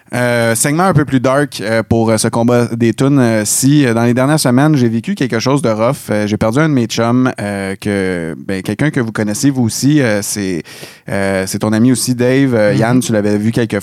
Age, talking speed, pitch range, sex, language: 30-49, 245 wpm, 110-130 Hz, male, French